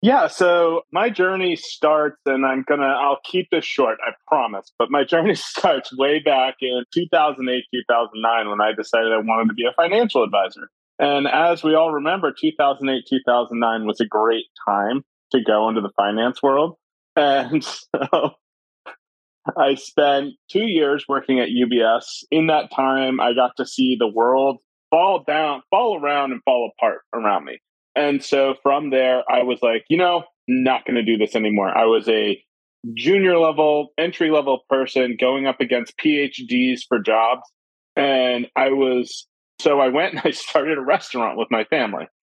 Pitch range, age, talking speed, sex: 120-150 Hz, 30-49, 170 wpm, male